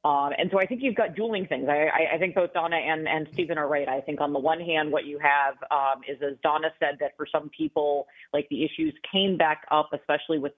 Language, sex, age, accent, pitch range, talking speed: English, female, 30-49, American, 145-175 Hz, 255 wpm